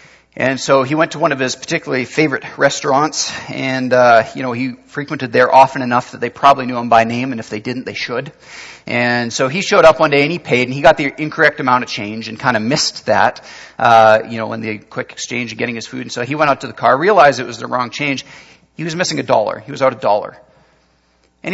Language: English